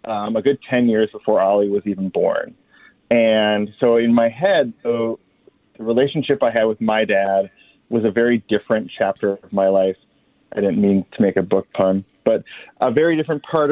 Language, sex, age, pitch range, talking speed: English, male, 30-49, 100-115 Hz, 195 wpm